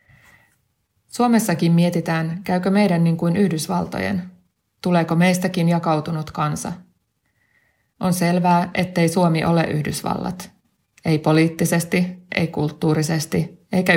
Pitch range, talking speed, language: 155-180 Hz, 95 wpm, Finnish